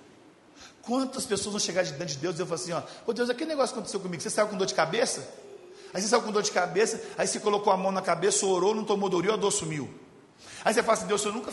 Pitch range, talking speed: 170-240 Hz, 285 wpm